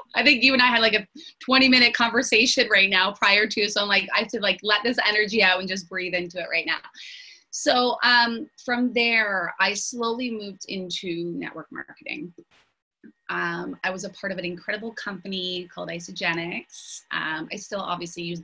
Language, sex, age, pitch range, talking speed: English, female, 20-39, 175-230 Hz, 185 wpm